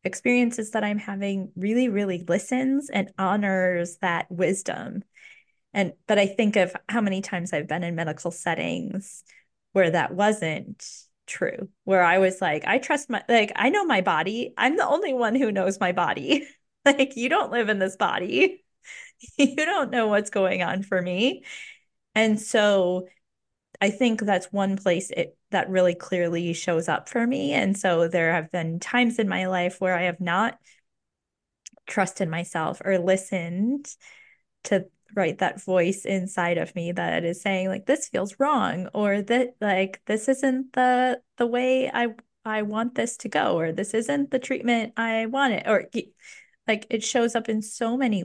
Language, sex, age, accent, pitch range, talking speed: English, female, 20-39, American, 185-245 Hz, 175 wpm